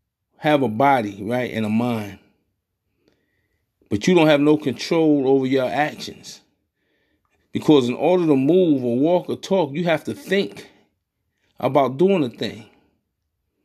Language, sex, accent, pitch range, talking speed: English, male, American, 115-155 Hz, 145 wpm